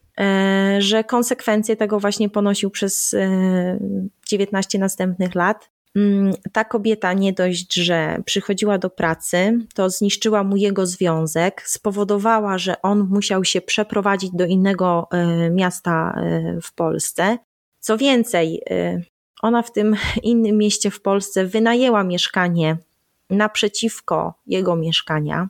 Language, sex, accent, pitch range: Polish, female, native, 180-215 Hz